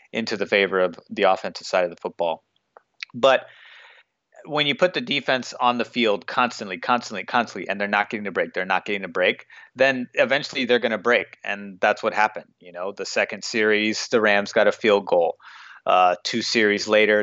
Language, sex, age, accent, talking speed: English, male, 30-49, American, 200 wpm